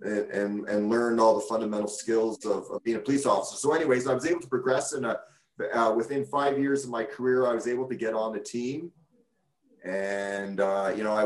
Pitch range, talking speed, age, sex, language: 105-130 Hz, 220 wpm, 30-49, male, English